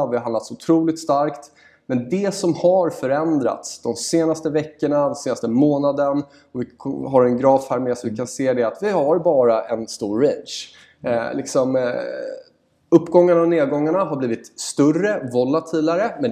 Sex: male